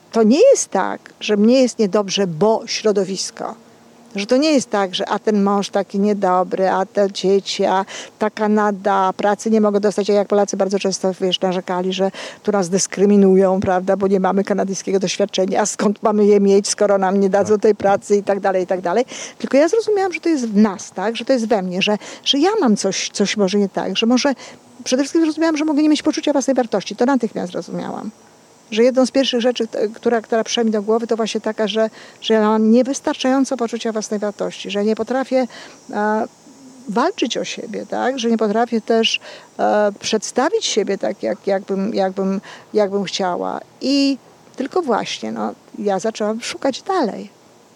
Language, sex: Polish, female